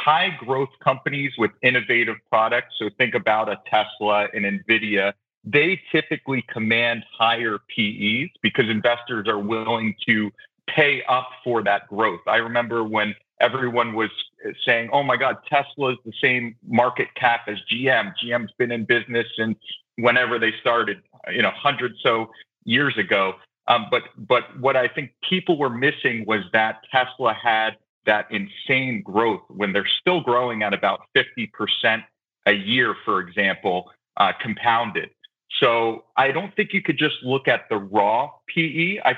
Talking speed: 155 wpm